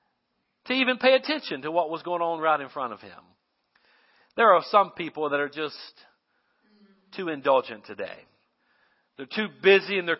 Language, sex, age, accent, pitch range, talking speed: English, male, 50-69, American, 135-180 Hz, 170 wpm